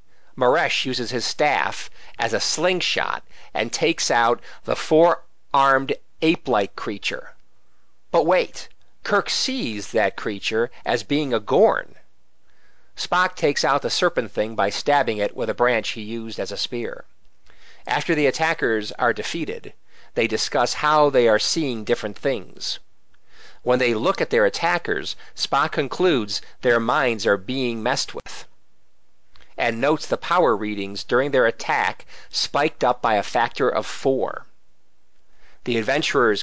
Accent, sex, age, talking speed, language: American, male, 50-69, 140 wpm, English